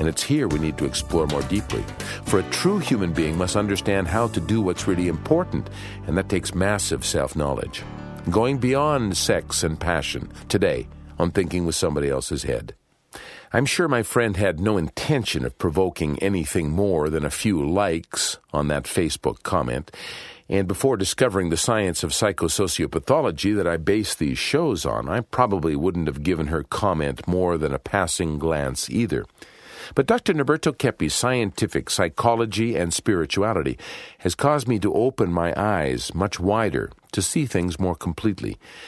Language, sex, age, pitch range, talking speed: English, male, 50-69, 80-115 Hz, 165 wpm